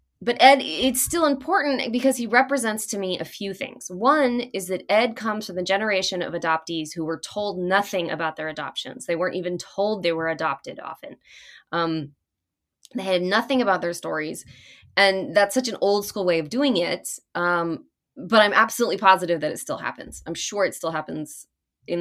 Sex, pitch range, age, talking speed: female, 170-230 Hz, 20-39, 190 wpm